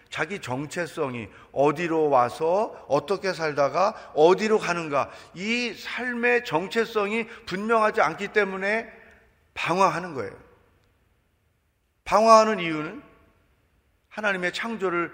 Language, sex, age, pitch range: Korean, male, 40-59, 115-195 Hz